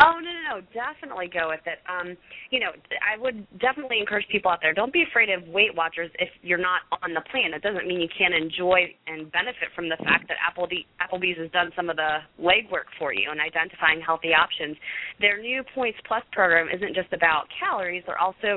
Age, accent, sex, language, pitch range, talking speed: 20-39, American, female, English, 165-205 Hz, 215 wpm